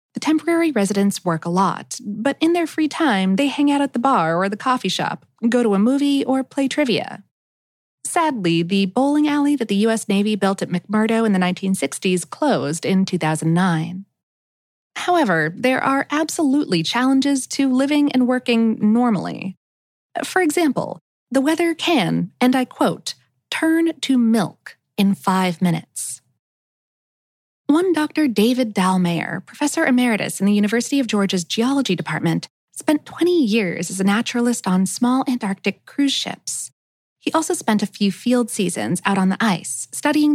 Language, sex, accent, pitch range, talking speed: English, female, American, 190-270 Hz, 155 wpm